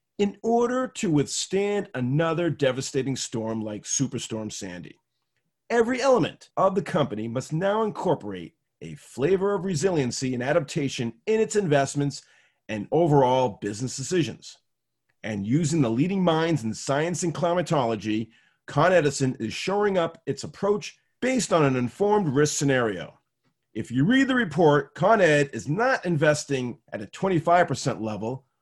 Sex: male